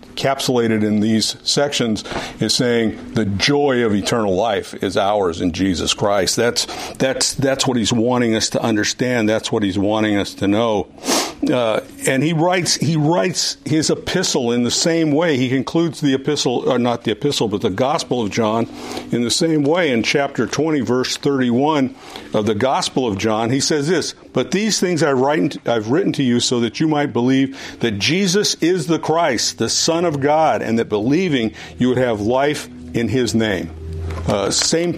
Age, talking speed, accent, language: 50-69, 185 wpm, American, English